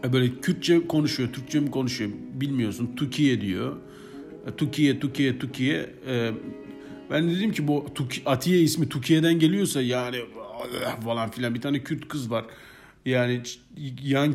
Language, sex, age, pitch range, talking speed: Turkish, male, 40-59, 120-160 Hz, 125 wpm